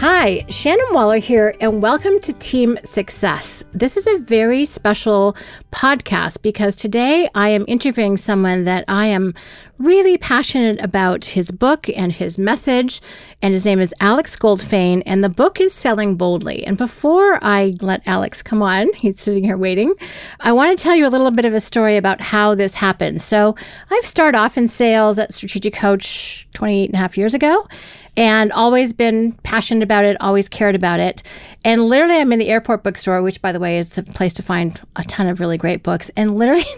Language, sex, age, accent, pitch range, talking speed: English, female, 40-59, American, 195-245 Hz, 195 wpm